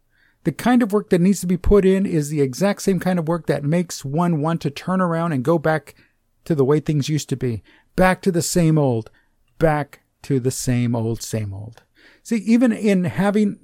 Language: English